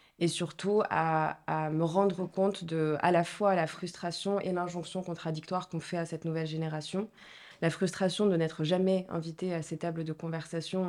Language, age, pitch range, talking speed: French, 20-39, 160-185 Hz, 180 wpm